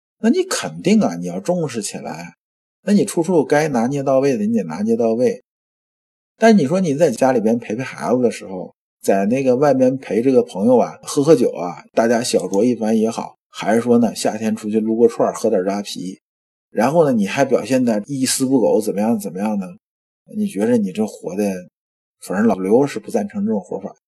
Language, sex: Chinese, male